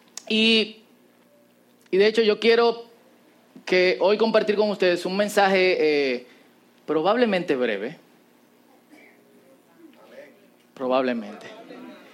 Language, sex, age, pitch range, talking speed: Spanish, male, 30-49, 150-210 Hz, 85 wpm